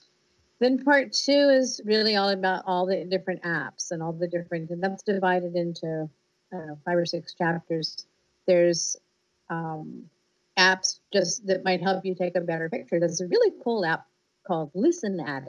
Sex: female